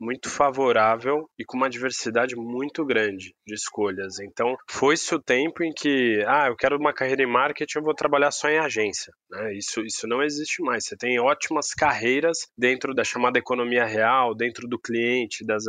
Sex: male